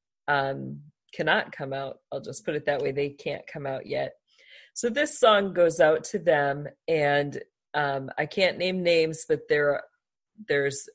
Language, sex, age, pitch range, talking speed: English, female, 40-59, 145-175 Hz, 175 wpm